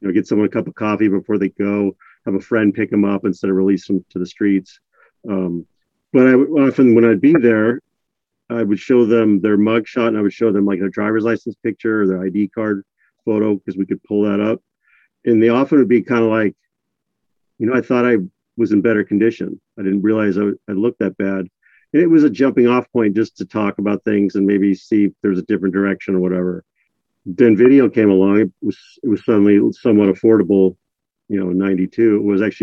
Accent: American